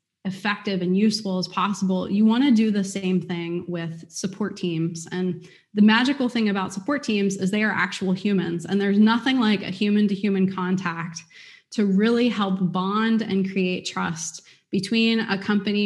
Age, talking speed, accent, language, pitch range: 20-39, 165 wpm, American, English, 180-210 Hz